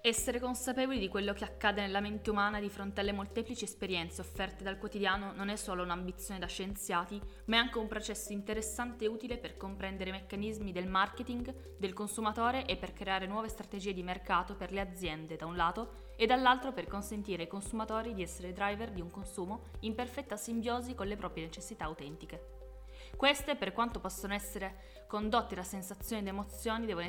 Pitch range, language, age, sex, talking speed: 185-220 Hz, Italian, 20-39, female, 185 wpm